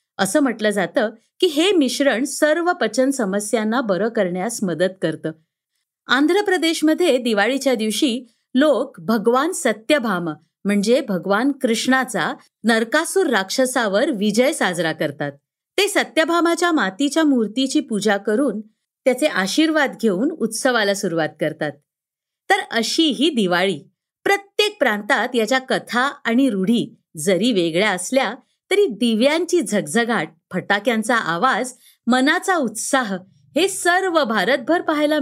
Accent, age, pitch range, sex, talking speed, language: native, 50-69, 200-285 Hz, female, 105 wpm, Marathi